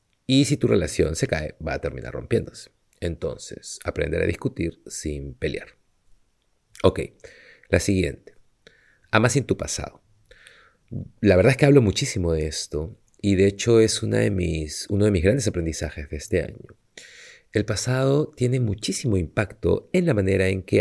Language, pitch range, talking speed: Spanish, 90-120 Hz, 155 wpm